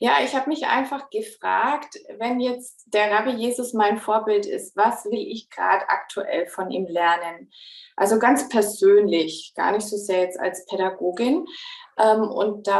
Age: 20-39